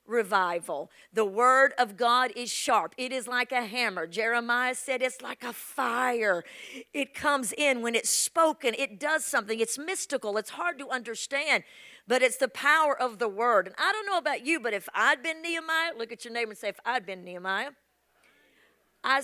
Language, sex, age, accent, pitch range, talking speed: English, female, 50-69, American, 245-330 Hz, 190 wpm